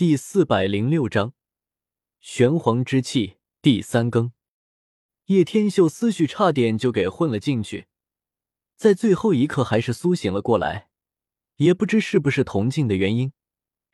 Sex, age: male, 20-39